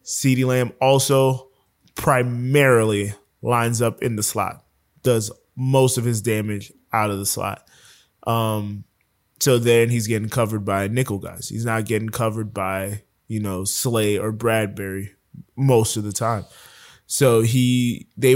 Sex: male